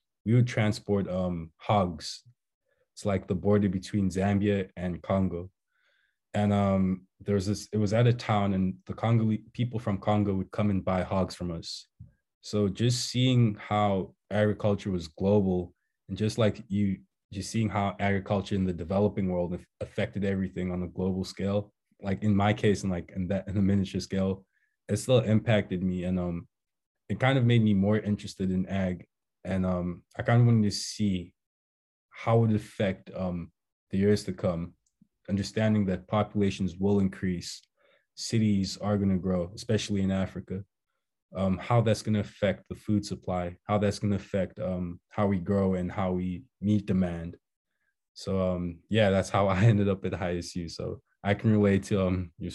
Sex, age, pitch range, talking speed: male, 20-39, 90-105 Hz, 175 wpm